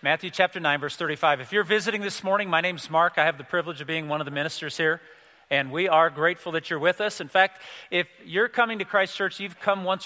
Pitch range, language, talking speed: 155-190 Hz, English, 255 wpm